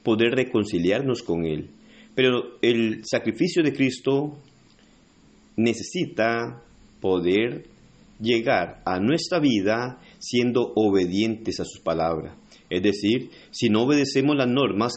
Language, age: Spanish, 40-59